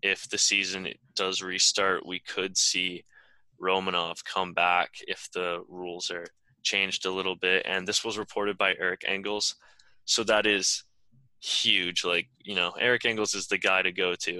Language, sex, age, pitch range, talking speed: English, male, 10-29, 95-115 Hz, 170 wpm